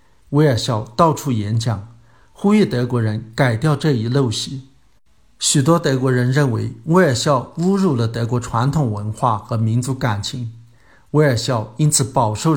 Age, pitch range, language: 50-69, 115-145 Hz, Chinese